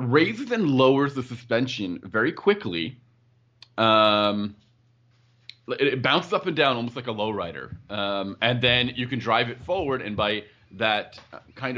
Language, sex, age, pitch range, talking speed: English, male, 30-49, 95-120 Hz, 160 wpm